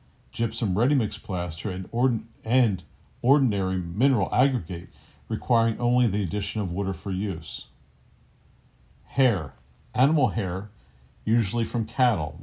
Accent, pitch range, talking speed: American, 90-120 Hz, 110 wpm